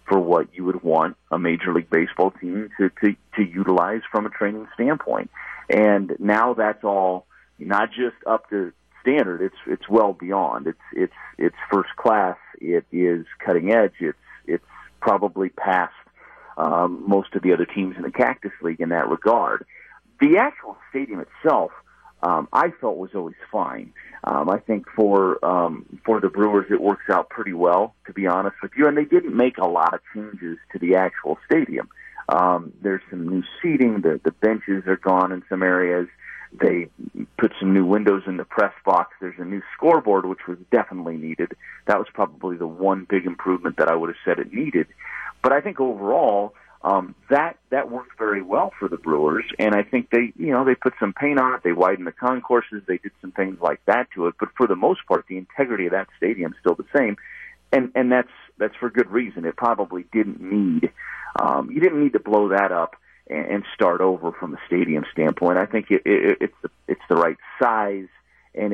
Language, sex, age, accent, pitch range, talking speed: English, male, 40-59, American, 90-110 Hz, 195 wpm